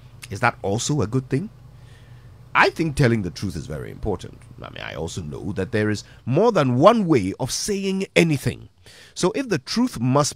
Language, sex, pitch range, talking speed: English, male, 105-155 Hz, 195 wpm